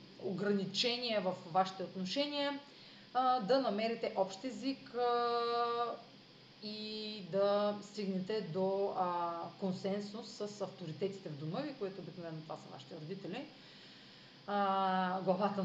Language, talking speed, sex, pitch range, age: Bulgarian, 95 wpm, female, 185-245 Hz, 30-49